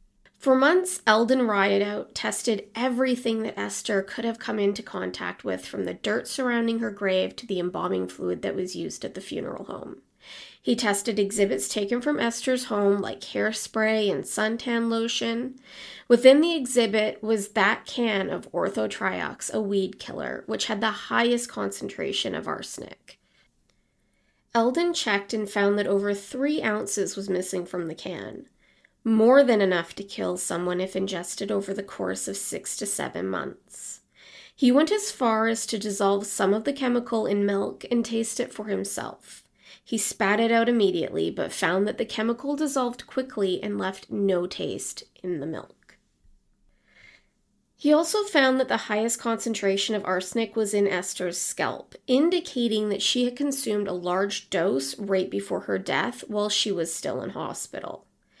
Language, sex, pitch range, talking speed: English, female, 195-240 Hz, 160 wpm